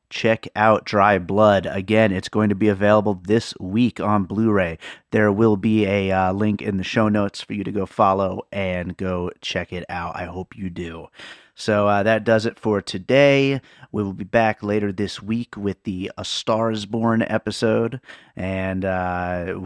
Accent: American